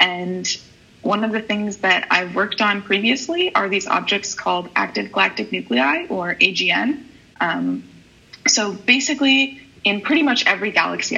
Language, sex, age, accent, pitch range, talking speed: English, female, 20-39, American, 195-260 Hz, 145 wpm